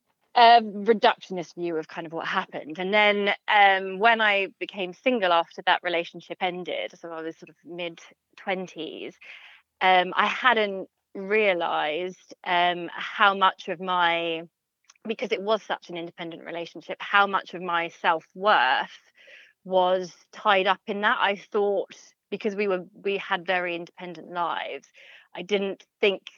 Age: 20-39